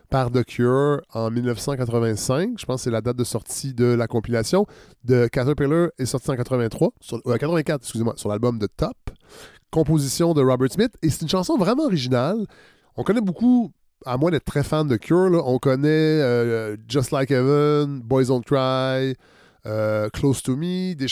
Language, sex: French, male